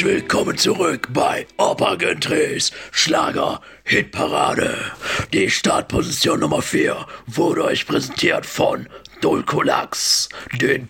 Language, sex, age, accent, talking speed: German, male, 60-79, German, 95 wpm